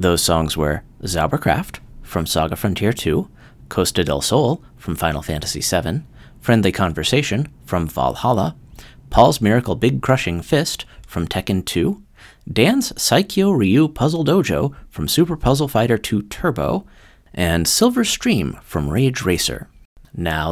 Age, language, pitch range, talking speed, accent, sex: 30-49, English, 85-135 Hz, 130 wpm, American, male